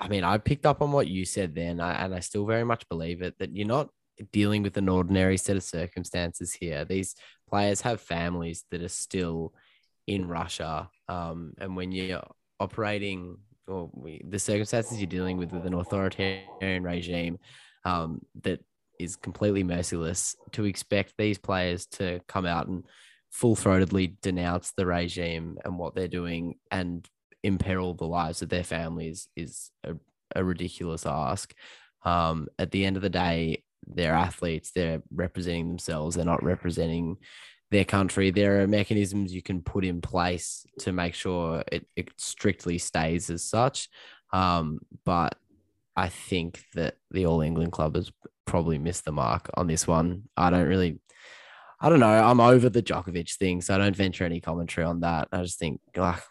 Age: 10-29